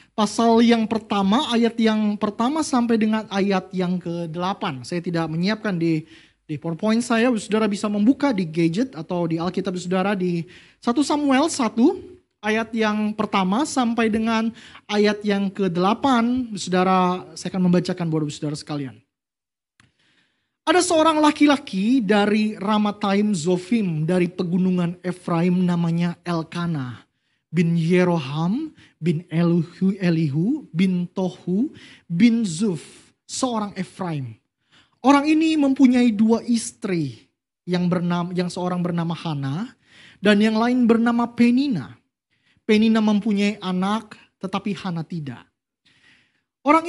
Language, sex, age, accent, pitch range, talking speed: Indonesian, male, 20-39, native, 175-225 Hz, 115 wpm